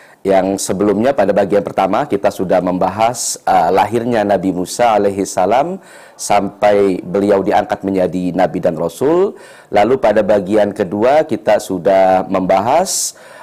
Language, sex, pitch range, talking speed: Indonesian, male, 100-130 Hz, 120 wpm